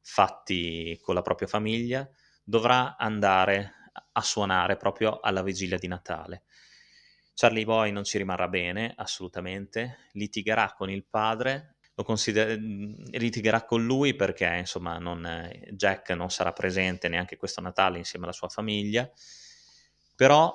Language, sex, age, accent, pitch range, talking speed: Italian, male, 20-39, native, 90-115 Hz, 125 wpm